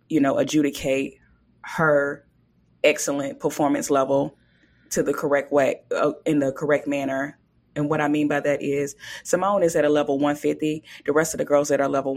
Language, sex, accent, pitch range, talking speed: English, female, American, 145-165 Hz, 180 wpm